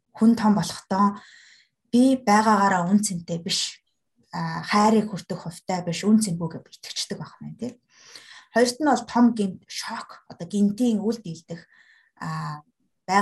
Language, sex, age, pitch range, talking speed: Russian, female, 20-39, 170-225 Hz, 100 wpm